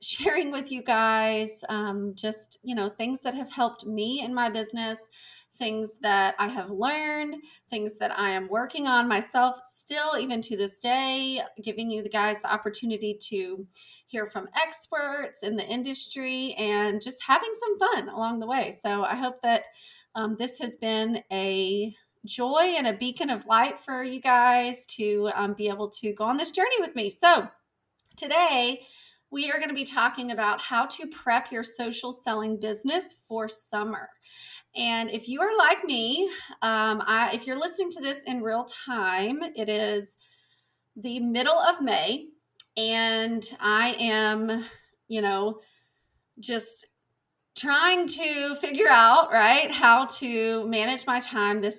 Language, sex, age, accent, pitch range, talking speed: English, female, 30-49, American, 215-265 Hz, 160 wpm